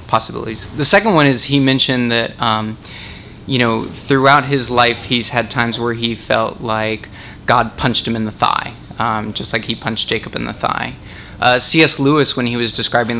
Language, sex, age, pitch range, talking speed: English, male, 20-39, 110-130 Hz, 195 wpm